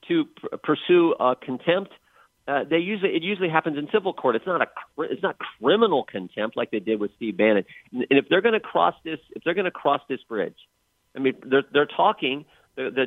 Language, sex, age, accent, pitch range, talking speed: English, male, 50-69, American, 125-180 Hz, 190 wpm